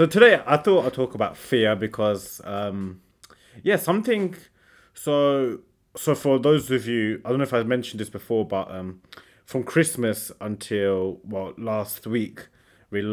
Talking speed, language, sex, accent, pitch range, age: 160 wpm, English, male, British, 100-125 Hz, 20-39